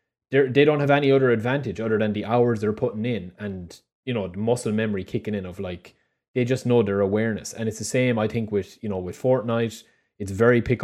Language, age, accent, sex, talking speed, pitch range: English, 20-39, Irish, male, 240 wpm, 100-125 Hz